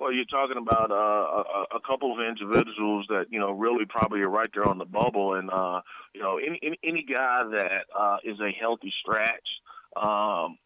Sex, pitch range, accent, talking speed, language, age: male, 100-120 Hz, American, 205 wpm, English, 30-49